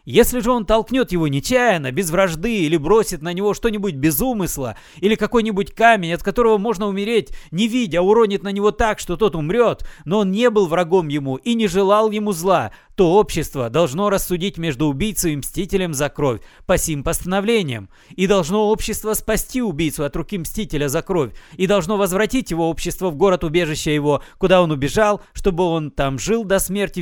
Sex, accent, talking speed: male, native, 180 wpm